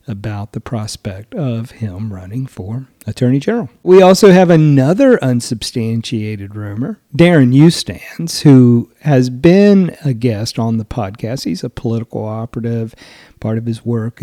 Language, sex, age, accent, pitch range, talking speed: English, male, 40-59, American, 115-165 Hz, 140 wpm